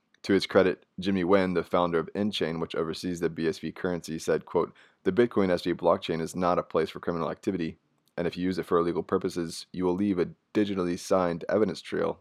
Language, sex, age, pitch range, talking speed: English, male, 20-39, 85-95 Hz, 210 wpm